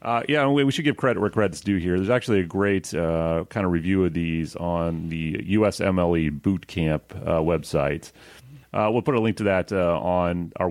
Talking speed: 215 wpm